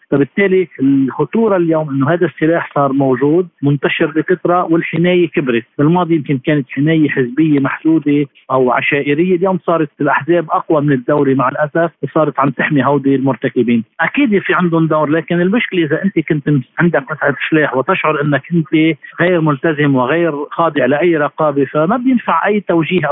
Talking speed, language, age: 150 wpm, Arabic, 50-69